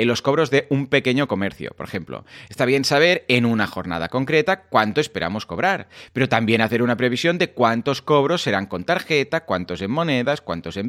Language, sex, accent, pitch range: Spanish, male, Spanish, 110-155 Hz